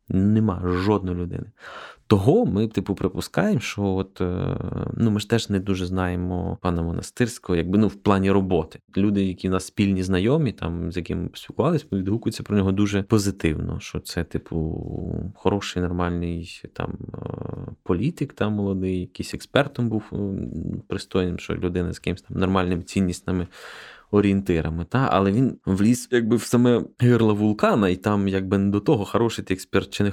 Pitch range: 90-110 Hz